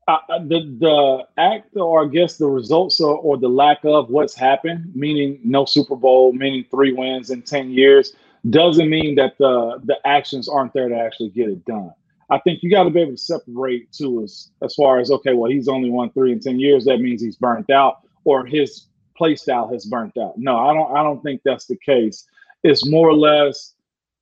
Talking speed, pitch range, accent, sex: 220 wpm, 140-190 Hz, American, male